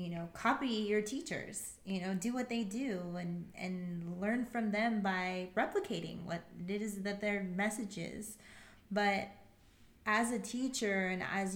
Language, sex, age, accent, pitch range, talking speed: English, female, 20-39, American, 195-230 Hz, 150 wpm